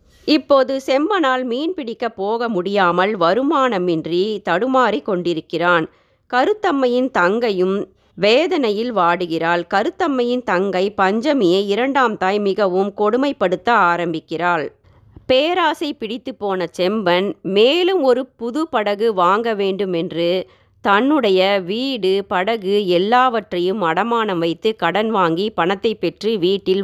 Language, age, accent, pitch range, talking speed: Tamil, 30-49, native, 175-240 Hz, 90 wpm